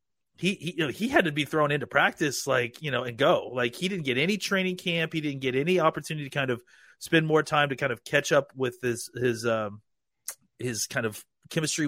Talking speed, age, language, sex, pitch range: 235 wpm, 30-49, English, male, 125-170 Hz